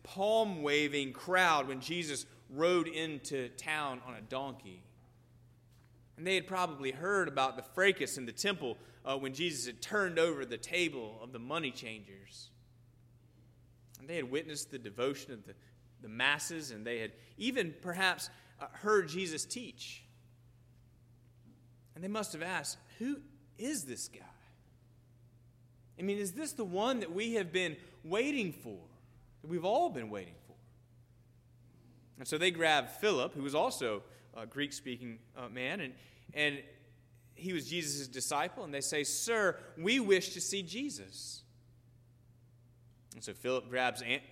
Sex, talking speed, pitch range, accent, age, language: male, 150 wpm, 120-170 Hz, American, 30-49, English